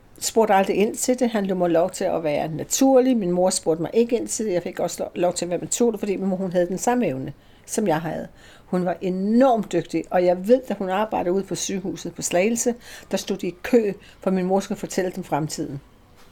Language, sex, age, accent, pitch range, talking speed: Danish, female, 60-79, native, 180-230 Hz, 245 wpm